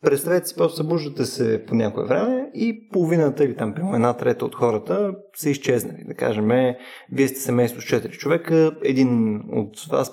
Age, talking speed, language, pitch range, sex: 30-49, 180 wpm, Bulgarian, 115-170 Hz, male